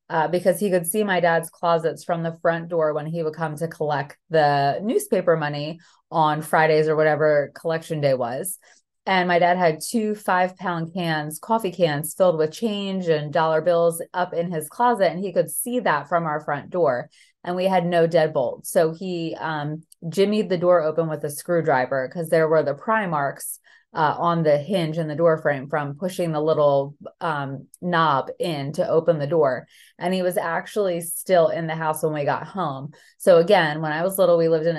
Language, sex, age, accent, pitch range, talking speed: English, female, 30-49, American, 155-180 Hz, 205 wpm